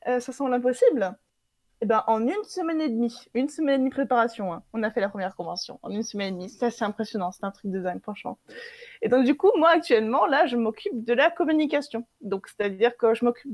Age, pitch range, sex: 20-39, 215-270 Hz, female